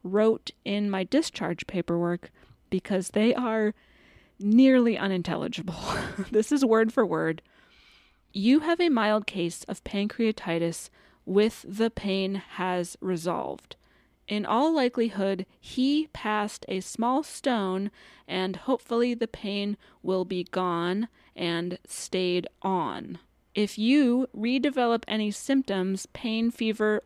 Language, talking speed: English, 115 wpm